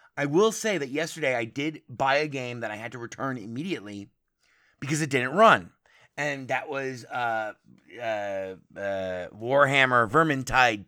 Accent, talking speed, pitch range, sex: American, 155 wpm, 110-155 Hz, male